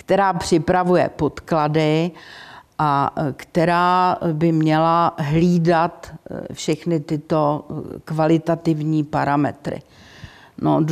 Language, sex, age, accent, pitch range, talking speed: Czech, female, 50-69, native, 155-180 Hz, 70 wpm